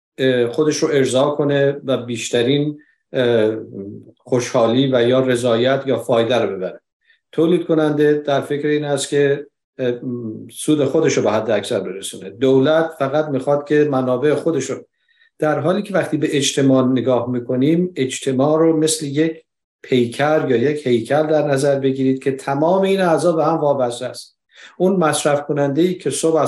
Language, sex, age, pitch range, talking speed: Persian, male, 50-69, 130-160 Hz, 150 wpm